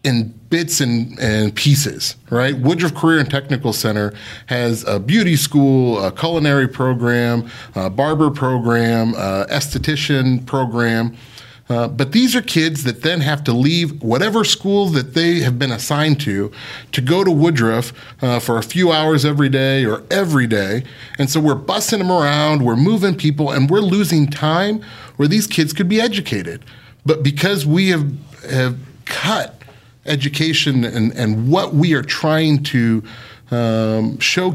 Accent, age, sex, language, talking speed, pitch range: American, 30-49, male, English, 160 wpm, 120-165 Hz